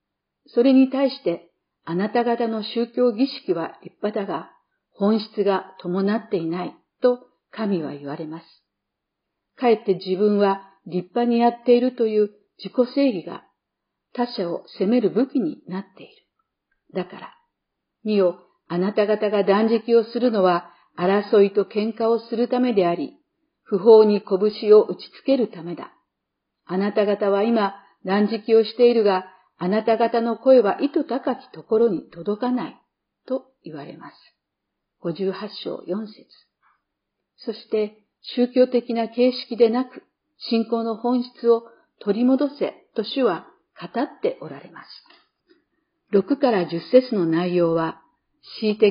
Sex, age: female, 50-69